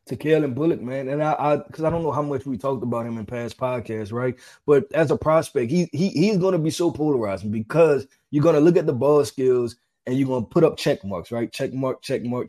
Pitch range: 130-165 Hz